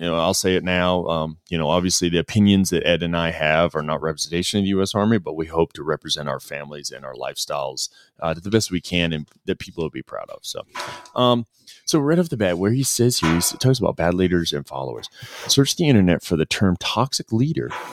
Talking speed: 245 wpm